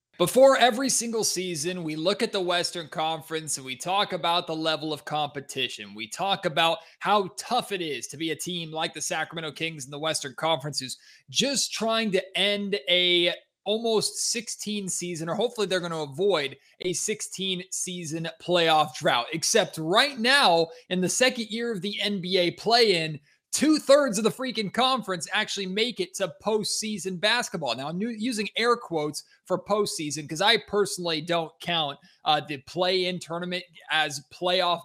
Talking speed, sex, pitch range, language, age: 165 wpm, male, 160-205 Hz, English, 20-39